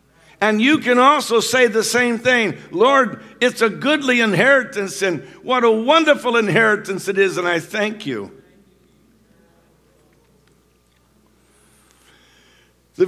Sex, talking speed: male, 115 wpm